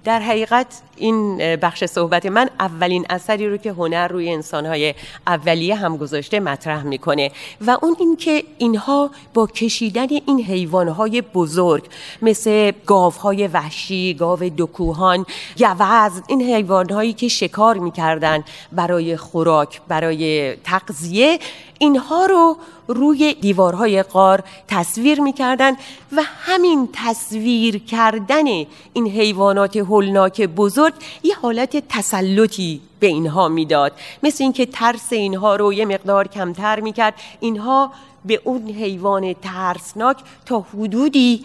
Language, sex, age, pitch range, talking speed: Persian, female, 30-49, 175-240 Hz, 115 wpm